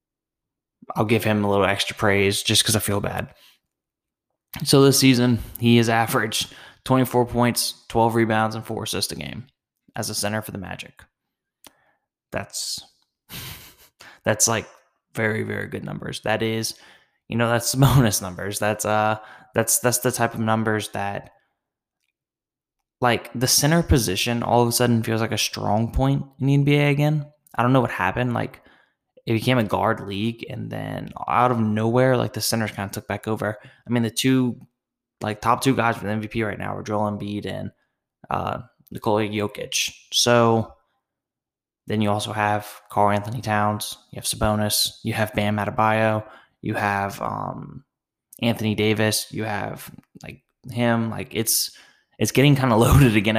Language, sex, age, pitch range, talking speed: English, male, 10-29, 105-120 Hz, 165 wpm